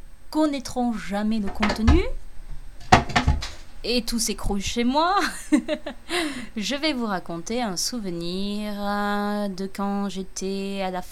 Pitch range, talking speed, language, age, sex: 190-235 Hz, 110 wpm, French, 20-39, female